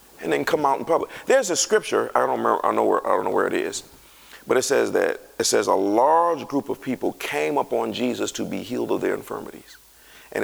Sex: male